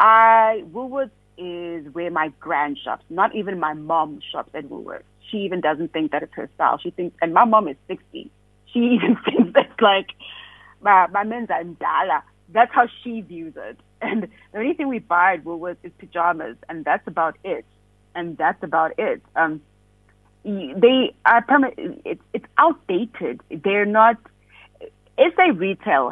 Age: 30-49